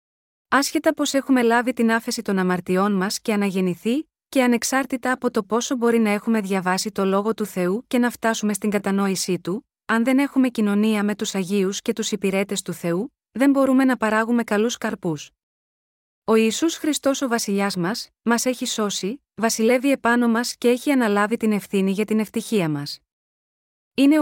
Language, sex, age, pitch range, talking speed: Greek, female, 20-39, 200-250 Hz, 175 wpm